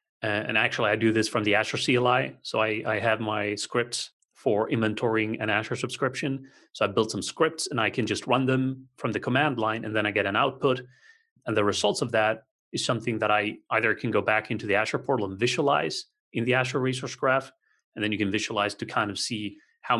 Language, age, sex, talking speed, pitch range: English, 30-49, male, 225 wpm, 110-130 Hz